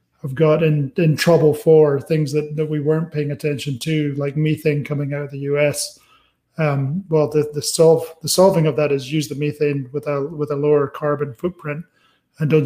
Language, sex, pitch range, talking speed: English, male, 145-155 Hz, 205 wpm